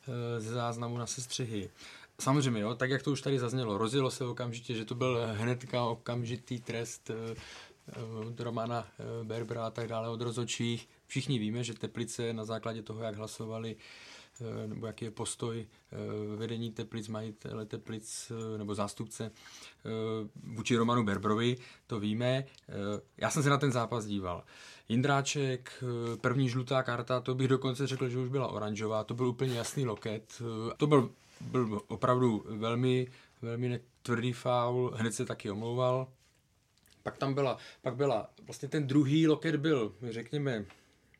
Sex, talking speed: male, 145 wpm